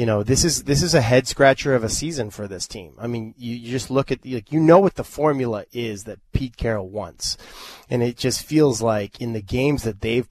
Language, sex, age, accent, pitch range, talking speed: English, male, 20-39, American, 110-140 Hz, 245 wpm